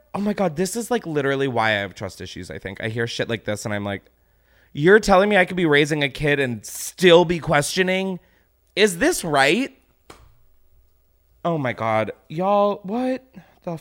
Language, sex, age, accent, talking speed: English, male, 20-39, American, 190 wpm